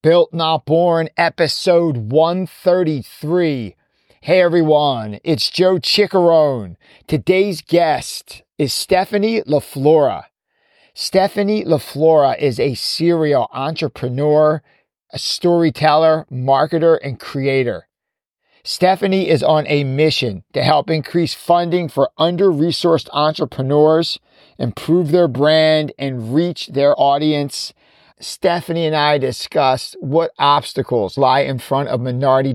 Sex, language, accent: male, English, American